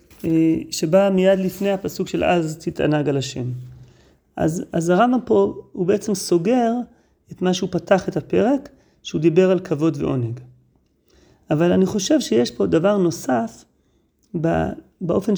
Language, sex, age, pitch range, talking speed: Hebrew, male, 30-49, 160-205 Hz, 135 wpm